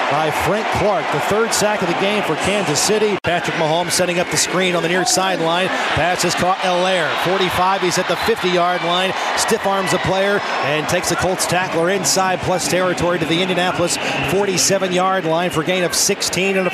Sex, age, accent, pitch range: male, 40-59, American, 170-200 Hz